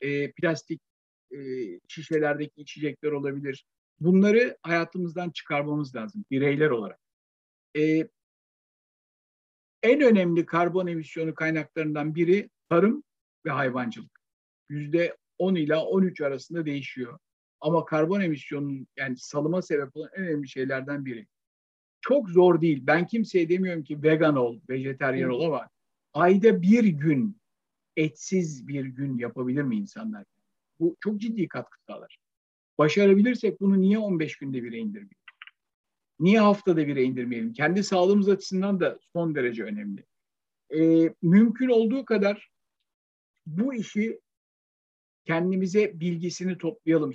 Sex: male